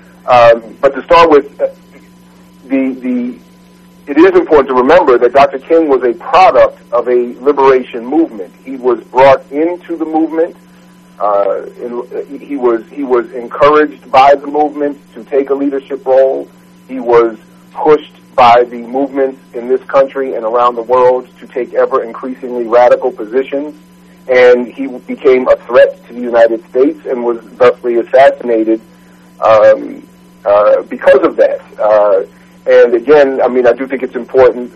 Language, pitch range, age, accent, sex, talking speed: English, 115-140 Hz, 40-59, American, male, 155 wpm